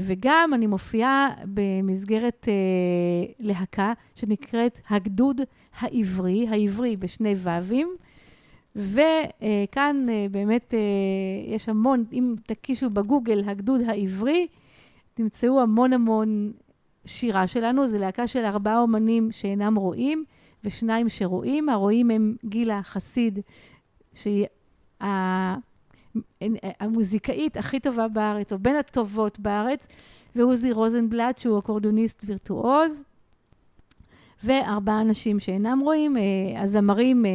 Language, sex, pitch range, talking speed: Hebrew, female, 205-245 Hz, 95 wpm